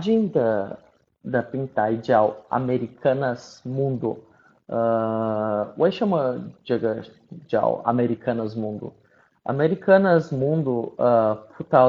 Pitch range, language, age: 115-150 Hz, Chinese, 20-39